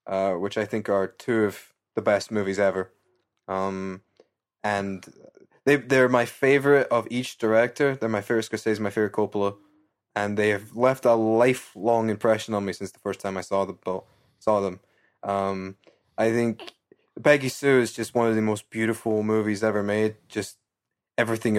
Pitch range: 100-120 Hz